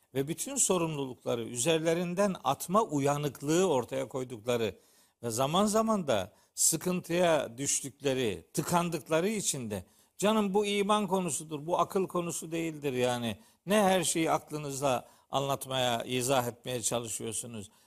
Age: 50-69